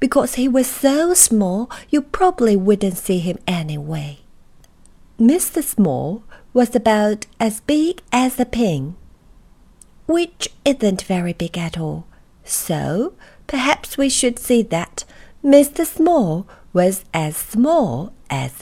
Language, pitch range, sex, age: Chinese, 170-265 Hz, female, 40-59